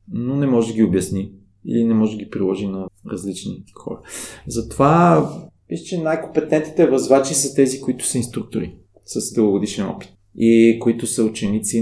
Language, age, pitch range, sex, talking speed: Bulgarian, 20-39, 105-135 Hz, male, 155 wpm